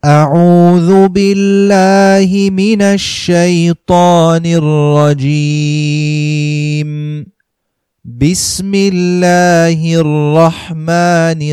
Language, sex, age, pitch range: English, male, 30-49, 150-175 Hz